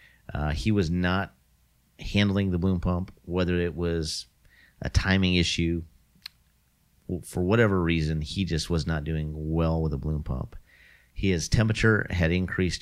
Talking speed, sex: 145 wpm, male